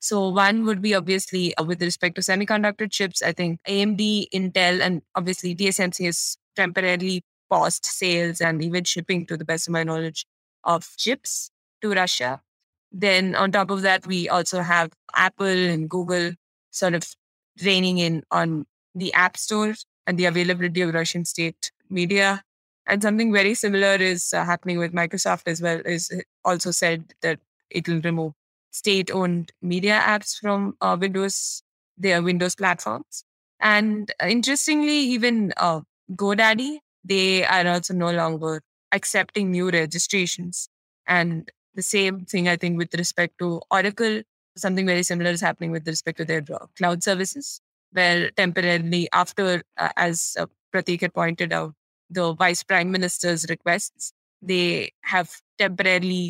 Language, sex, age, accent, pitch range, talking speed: English, female, 20-39, Indian, 170-195 Hz, 150 wpm